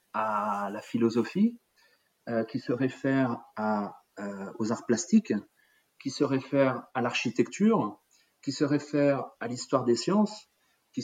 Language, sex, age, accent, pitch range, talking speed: French, male, 40-59, French, 110-145 Hz, 135 wpm